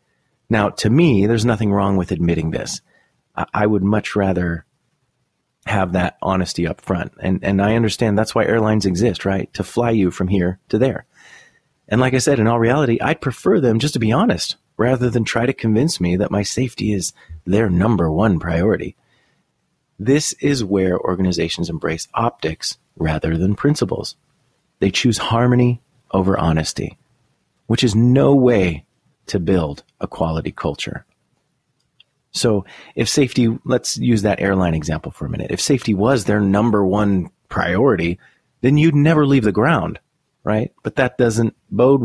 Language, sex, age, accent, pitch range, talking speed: English, male, 30-49, American, 95-120 Hz, 165 wpm